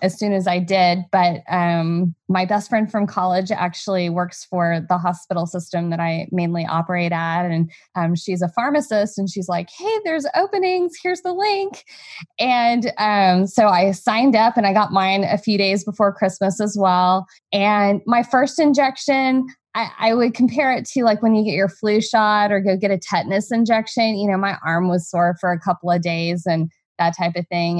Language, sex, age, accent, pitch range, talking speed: English, female, 20-39, American, 190-255 Hz, 200 wpm